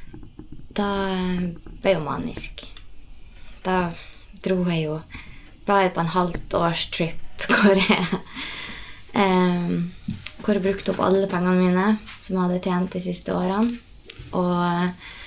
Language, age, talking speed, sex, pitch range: English, 20-39, 110 wpm, female, 170-210 Hz